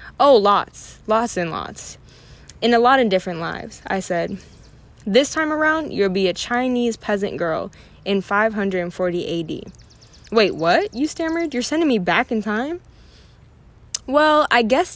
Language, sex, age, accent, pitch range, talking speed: English, female, 10-29, American, 190-245 Hz, 155 wpm